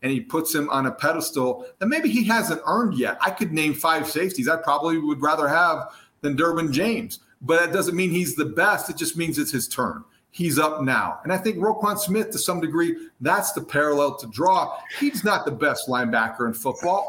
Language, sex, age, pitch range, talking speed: English, male, 40-59, 130-175 Hz, 220 wpm